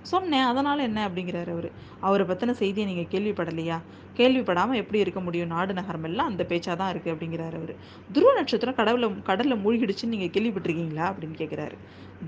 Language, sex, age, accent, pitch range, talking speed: Tamil, female, 20-39, native, 175-225 Hz, 145 wpm